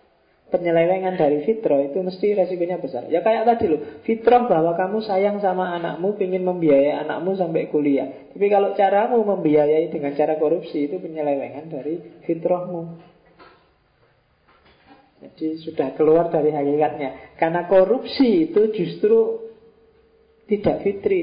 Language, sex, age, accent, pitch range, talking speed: Indonesian, male, 40-59, native, 145-190 Hz, 125 wpm